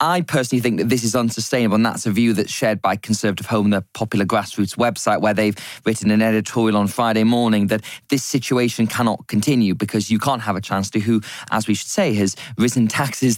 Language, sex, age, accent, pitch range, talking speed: English, male, 20-39, British, 110-135 Hz, 215 wpm